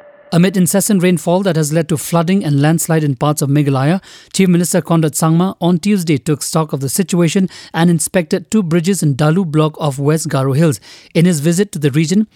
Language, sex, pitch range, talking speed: English, male, 150-175 Hz, 205 wpm